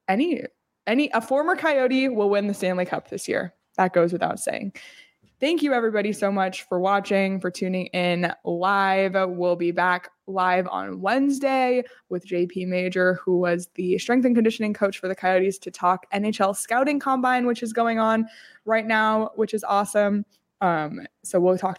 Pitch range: 180-225 Hz